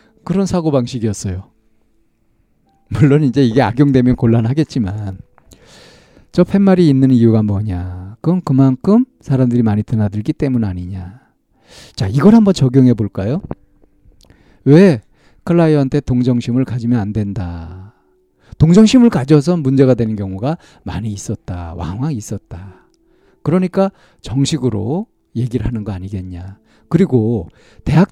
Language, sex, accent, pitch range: Korean, male, native, 110-155 Hz